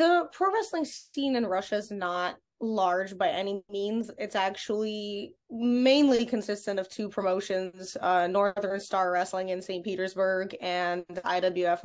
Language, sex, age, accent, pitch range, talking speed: English, female, 20-39, American, 185-230 Hz, 140 wpm